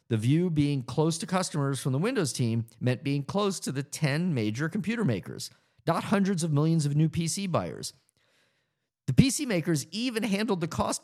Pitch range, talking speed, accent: 125-175 Hz, 185 wpm, American